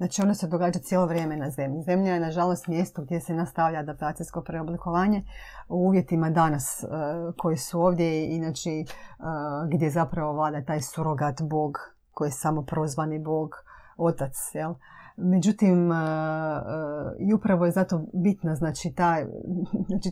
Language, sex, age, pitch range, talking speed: Croatian, female, 30-49, 155-180 Hz, 140 wpm